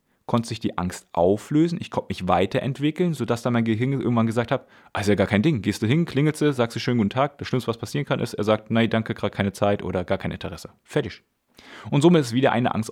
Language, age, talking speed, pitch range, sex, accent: German, 30-49, 255 wpm, 105-150 Hz, male, German